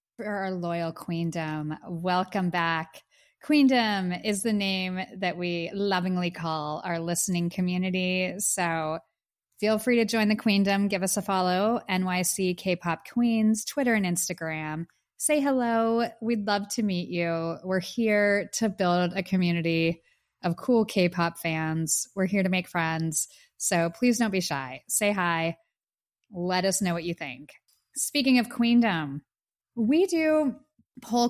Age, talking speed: 20-39, 140 wpm